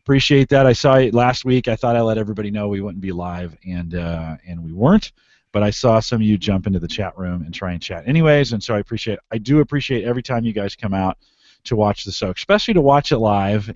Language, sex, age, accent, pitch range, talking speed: English, male, 40-59, American, 95-130 Hz, 260 wpm